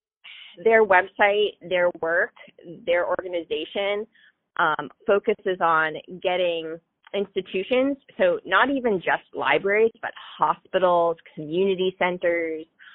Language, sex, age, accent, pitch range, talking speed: English, female, 20-39, American, 160-205 Hz, 95 wpm